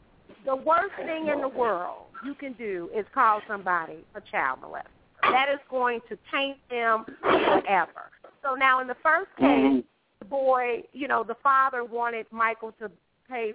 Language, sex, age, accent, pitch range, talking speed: English, female, 40-59, American, 235-315 Hz, 170 wpm